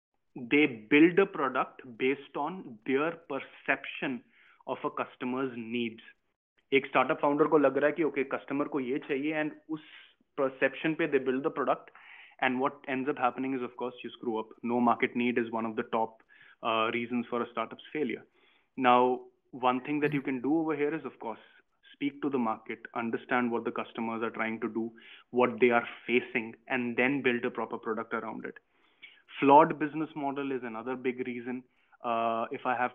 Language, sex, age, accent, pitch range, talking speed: English, male, 20-39, Indian, 120-140 Hz, 185 wpm